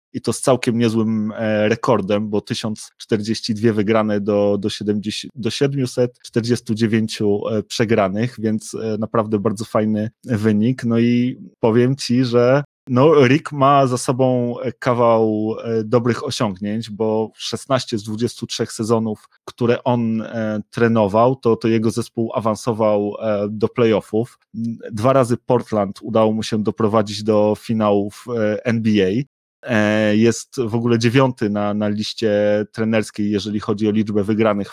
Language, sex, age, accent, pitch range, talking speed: Polish, male, 30-49, native, 105-120 Hz, 120 wpm